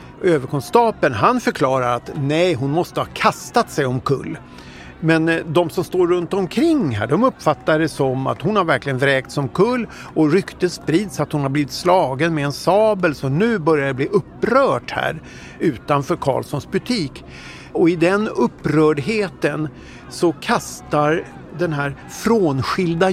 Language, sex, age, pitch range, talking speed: Swedish, male, 50-69, 135-185 Hz, 155 wpm